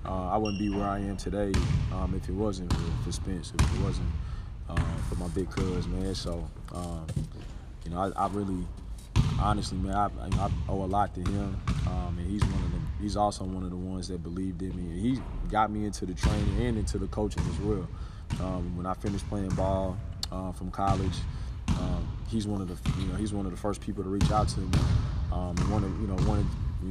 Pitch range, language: 90-105 Hz, English